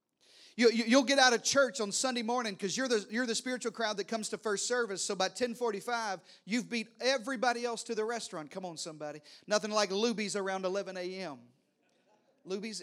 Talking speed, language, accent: 190 wpm, English, American